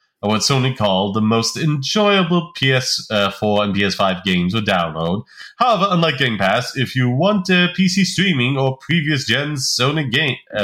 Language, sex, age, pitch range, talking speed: English, male, 30-49, 100-150 Hz, 160 wpm